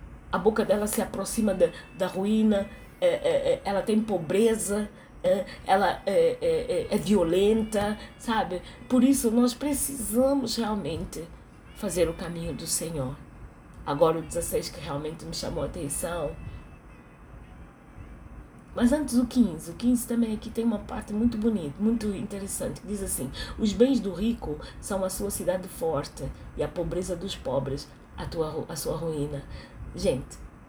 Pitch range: 165-225 Hz